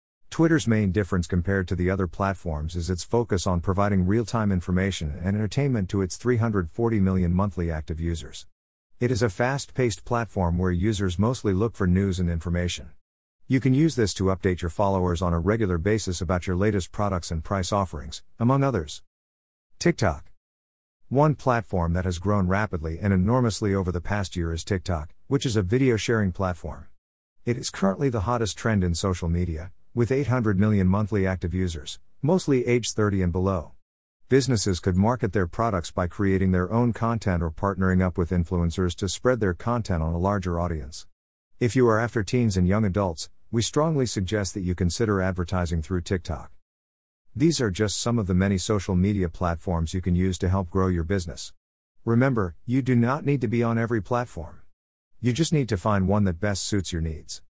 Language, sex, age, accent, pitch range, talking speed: English, male, 50-69, American, 85-115 Hz, 185 wpm